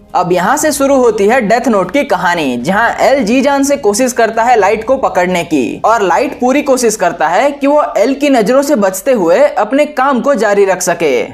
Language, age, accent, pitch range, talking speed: Hindi, 20-39, native, 205-290 Hz, 220 wpm